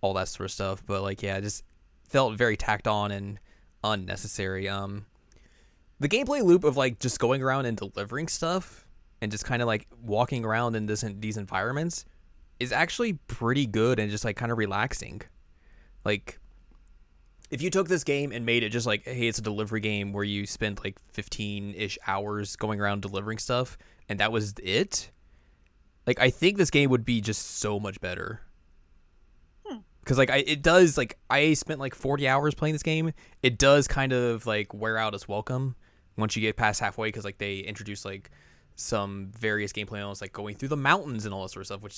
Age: 20-39